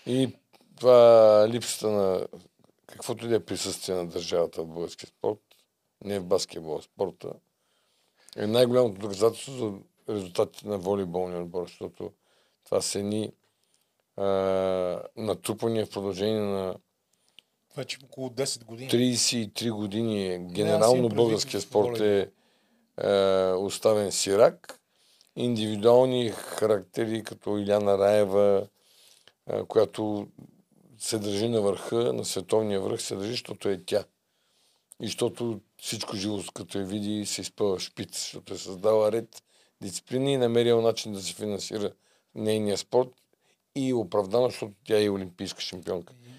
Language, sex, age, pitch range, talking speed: Bulgarian, male, 50-69, 100-120 Hz, 120 wpm